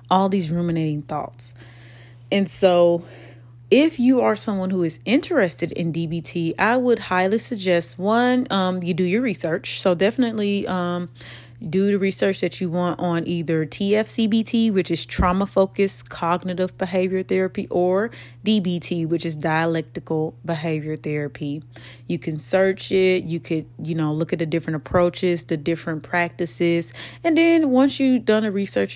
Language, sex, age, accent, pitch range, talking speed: English, female, 20-39, American, 160-190 Hz, 150 wpm